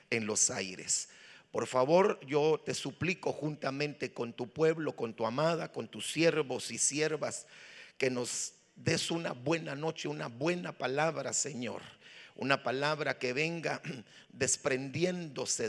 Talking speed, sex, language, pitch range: 135 wpm, male, Spanish, 130-165 Hz